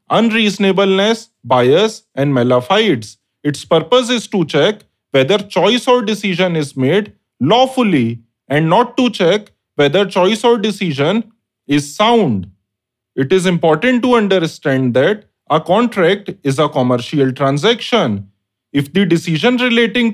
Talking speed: 125 wpm